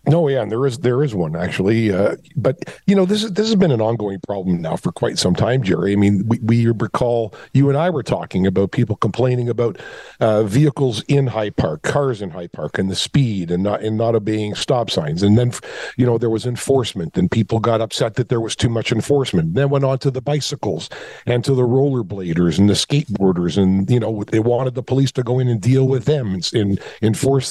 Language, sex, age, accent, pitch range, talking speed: English, male, 50-69, American, 110-135 Hz, 235 wpm